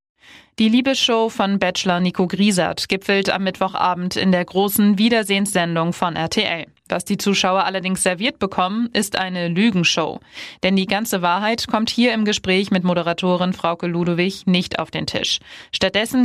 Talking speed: 150 wpm